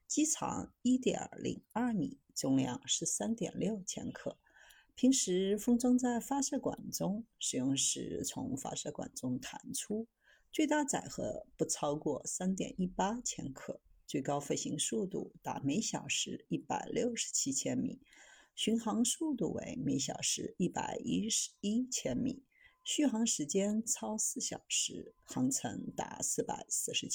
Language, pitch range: Chinese, 175-270 Hz